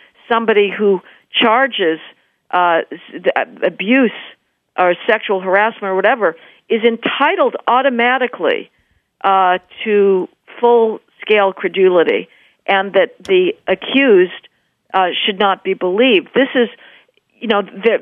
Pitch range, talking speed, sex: 185-235 Hz, 105 wpm, female